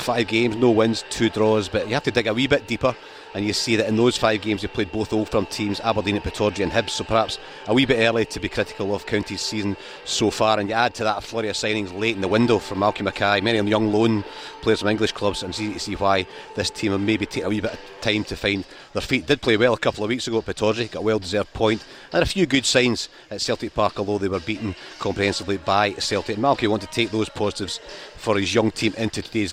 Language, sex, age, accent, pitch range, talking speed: English, male, 40-59, British, 105-115 Hz, 275 wpm